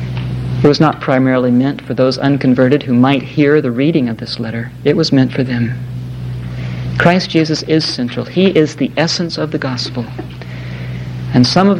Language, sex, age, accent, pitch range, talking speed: English, male, 60-79, American, 120-155 Hz, 180 wpm